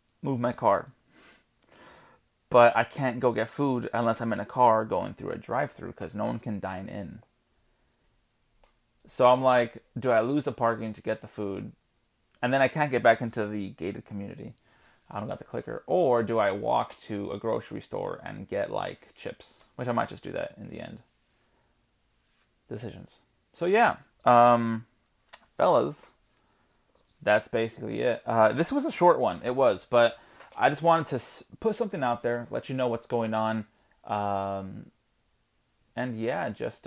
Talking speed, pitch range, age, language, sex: 175 wpm, 110-125 Hz, 30-49, English, male